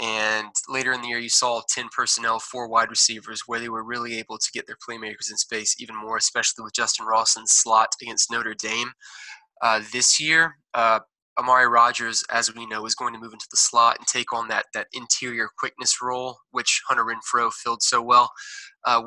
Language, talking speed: English, 200 wpm